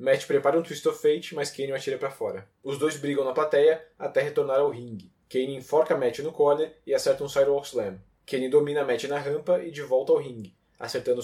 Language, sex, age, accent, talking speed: Portuguese, male, 20-39, Brazilian, 225 wpm